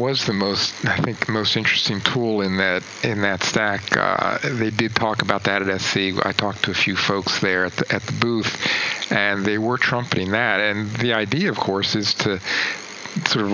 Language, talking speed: English, 200 wpm